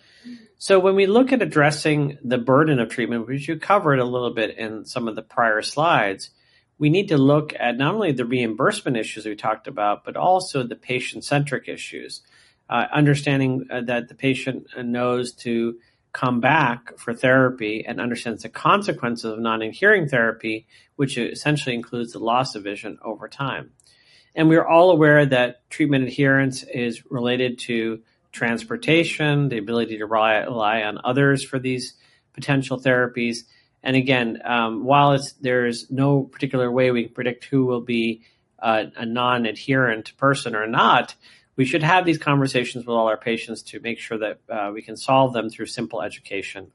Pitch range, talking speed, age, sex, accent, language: 115-140 Hz, 165 wpm, 40-59, male, American, English